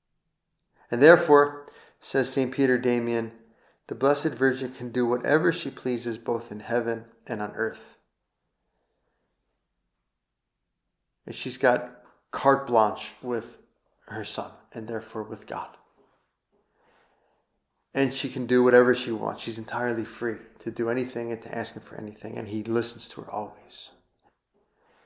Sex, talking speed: male, 135 wpm